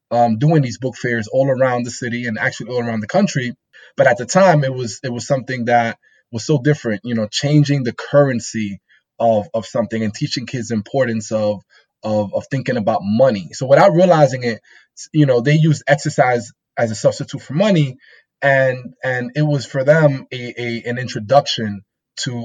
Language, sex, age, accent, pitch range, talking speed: English, male, 20-39, American, 110-140 Hz, 190 wpm